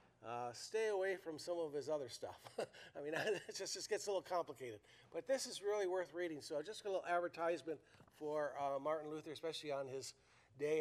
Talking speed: 205 wpm